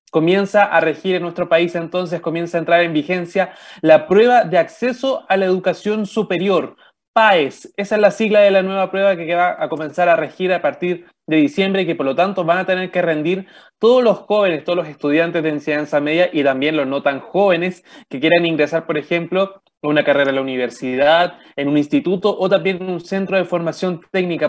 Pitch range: 155-195 Hz